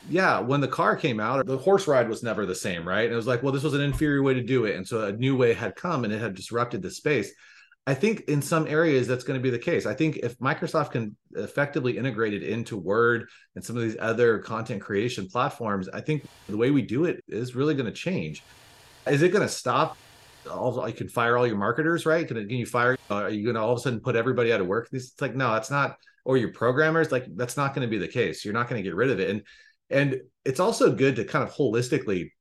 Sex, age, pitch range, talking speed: male, 30-49, 115-145 Hz, 265 wpm